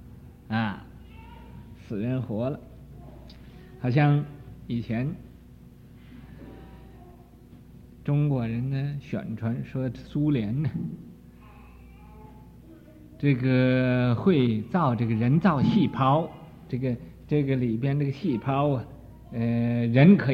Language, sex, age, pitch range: Chinese, male, 50-69, 115-175 Hz